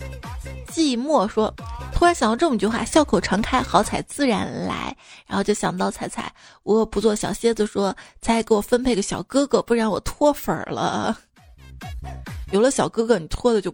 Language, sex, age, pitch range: Chinese, female, 20-39, 200-245 Hz